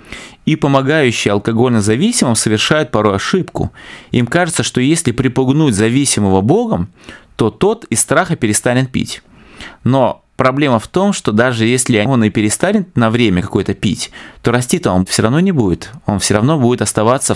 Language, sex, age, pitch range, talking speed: English, male, 20-39, 105-135 Hz, 160 wpm